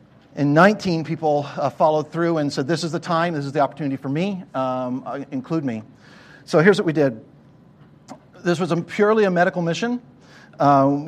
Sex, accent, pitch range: male, American, 145-180 Hz